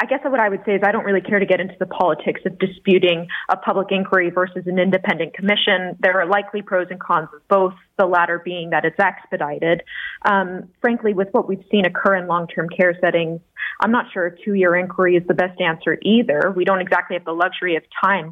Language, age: English, 30-49